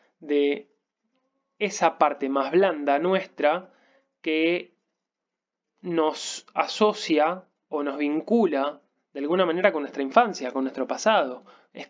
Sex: male